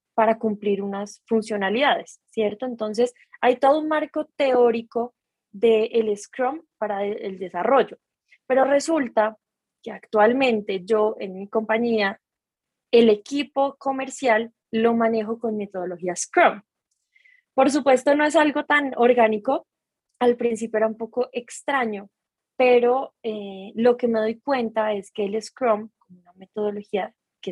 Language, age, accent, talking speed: Spanish, 20-39, Colombian, 135 wpm